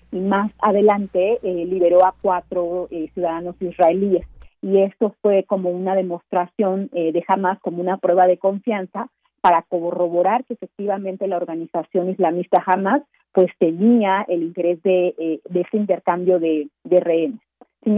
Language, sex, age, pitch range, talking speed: Spanish, female, 40-59, 180-205 Hz, 150 wpm